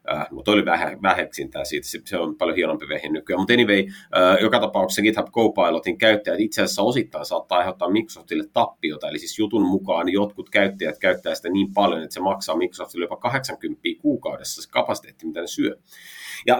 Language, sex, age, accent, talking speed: Finnish, male, 30-49, native, 180 wpm